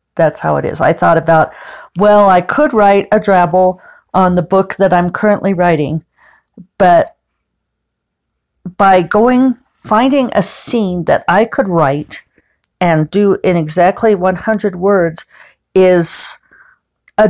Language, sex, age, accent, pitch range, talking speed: English, female, 50-69, American, 160-205 Hz, 130 wpm